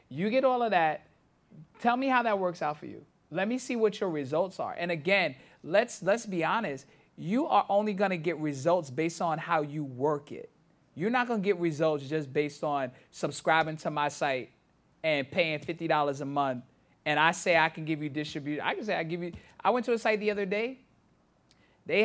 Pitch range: 160-220 Hz